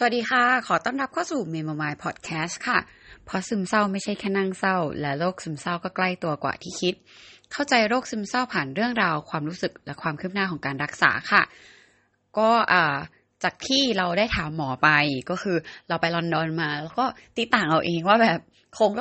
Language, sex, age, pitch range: Thai, female, 20-39, 155-220 Hz